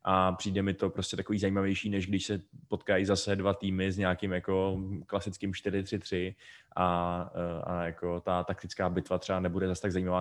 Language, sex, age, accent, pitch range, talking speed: Czech, male, 20-39, native, 95-105 Hz, 175 wpm